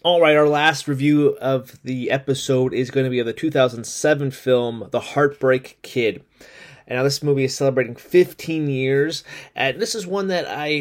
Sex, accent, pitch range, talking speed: male, American, 120-145 Hz, 170 wpm